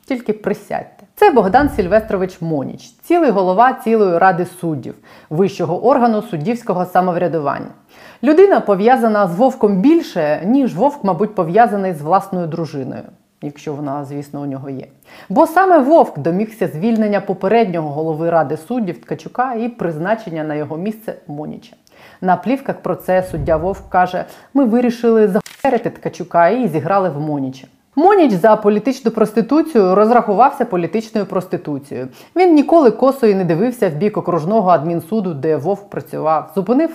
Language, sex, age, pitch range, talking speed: Ukrainian, female, 30-49, 165-230 Hz, 135 wpm